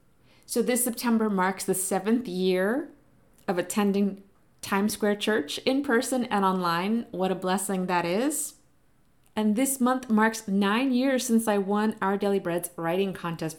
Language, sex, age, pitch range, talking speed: English, female, 30-49, 185-230 Hz, 155 wpm